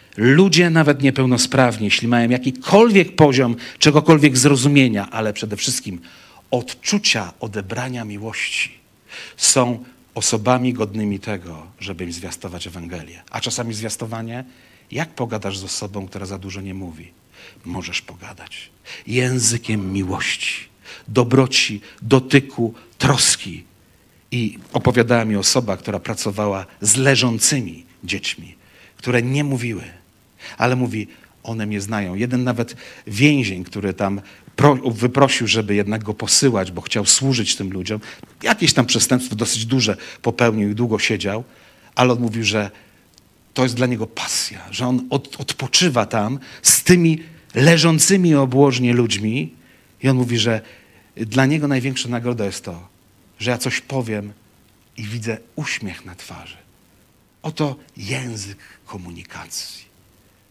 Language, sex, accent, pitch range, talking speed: Polish, male, native, 100-130 Hz, 120 wpm